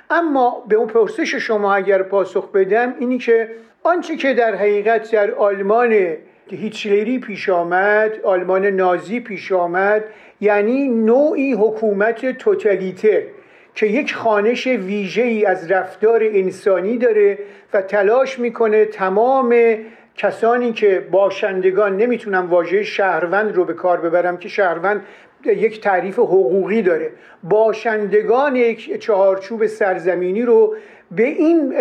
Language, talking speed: Persian, 120 wpm